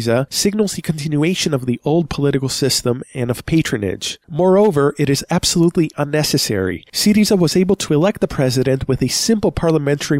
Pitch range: 125-165 Hz